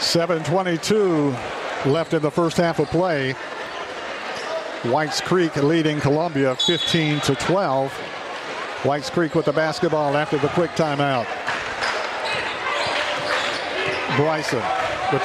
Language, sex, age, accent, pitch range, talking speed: English, male, 50-69, American, 150-185 Hz, 95 wpm